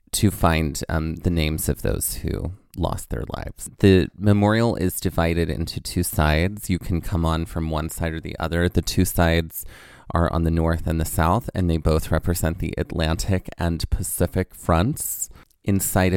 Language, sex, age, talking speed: English, male, 30-49, 180 wpm